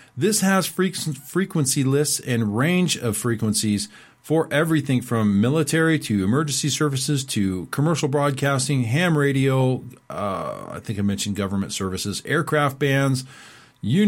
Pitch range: 110-150 Hz